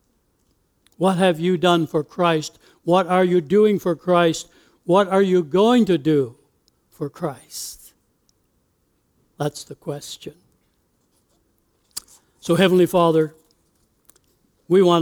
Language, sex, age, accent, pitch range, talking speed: English, male, 60-79, American, 135-175 Hz, 110 wpm